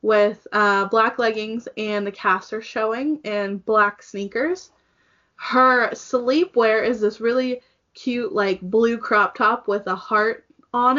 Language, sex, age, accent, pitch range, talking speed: English, female, 20-39, American, 210-250 Hz, 140 wpm